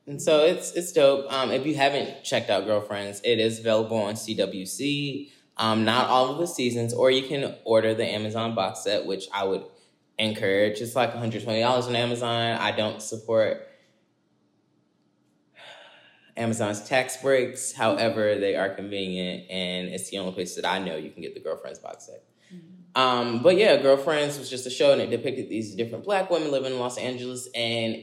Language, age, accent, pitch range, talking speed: English, 10-29, American, 110-135 Hz, 180 wpm